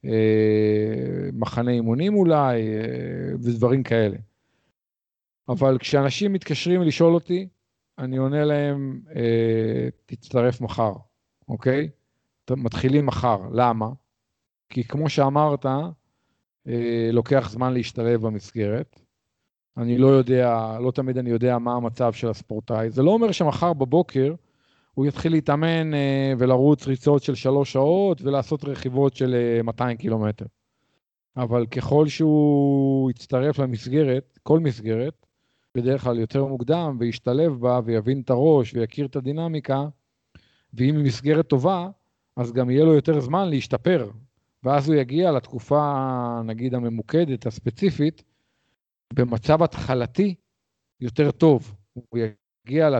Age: 40-59